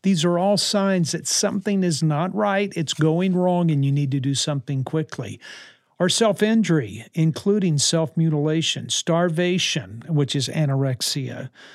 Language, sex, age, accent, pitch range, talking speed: English, male, 50-69, American, 145-185 Hz, 150 wpm